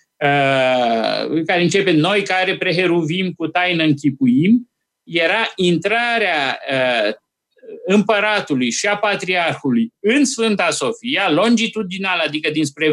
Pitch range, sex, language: 155-225 Hz, male, Romanian